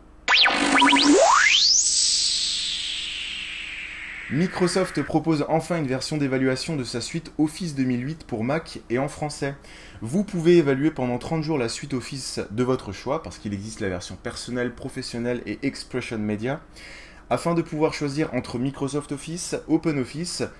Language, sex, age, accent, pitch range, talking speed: French, male, 20-39, French, 115-160 Hz, 135 wpm